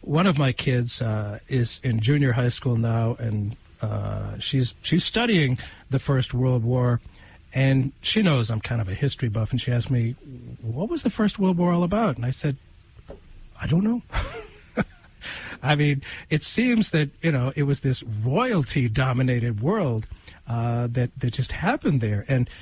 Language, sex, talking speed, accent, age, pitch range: English, male, 175 wpm, American, 50-69, 115-160 Hz